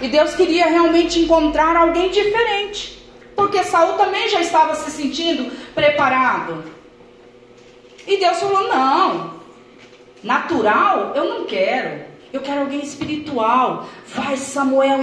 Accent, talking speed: Brazilian, 115 wpm